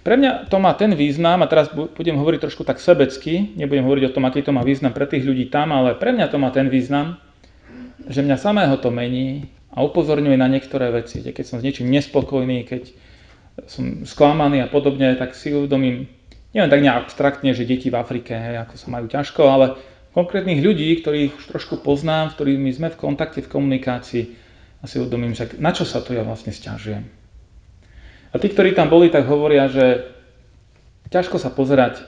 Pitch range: 120-145 Hz